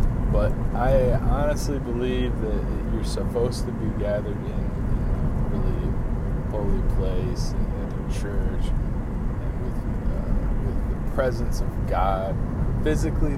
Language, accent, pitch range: English, American, 105-120 Hz